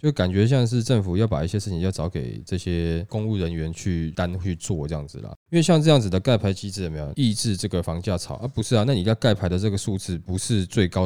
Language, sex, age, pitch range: Chinese, male, 20-39, 90-125 Hz